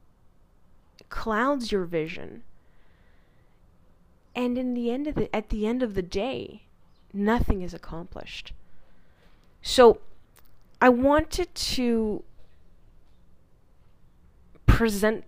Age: 20-39